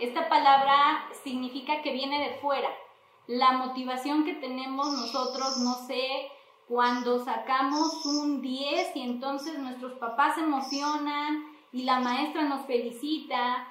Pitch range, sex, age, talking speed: 255-295 Hz, female, 20-39, 125 wpm